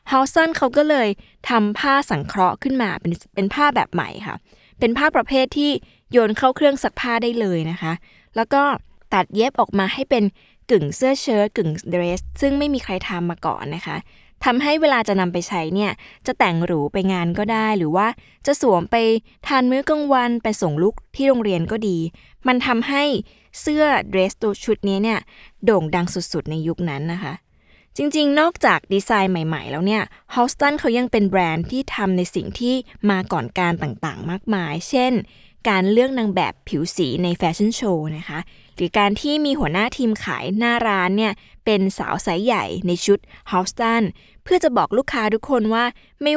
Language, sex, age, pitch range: Thai, female, 20-39, 180-255 Hz